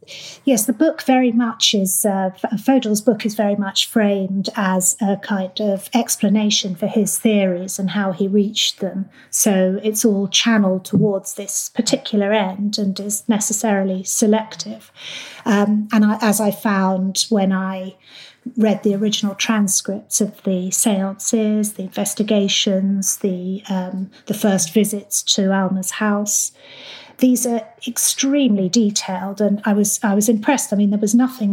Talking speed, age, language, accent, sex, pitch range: 150 wpm, 30-49, English, British, female, 190-220 Hz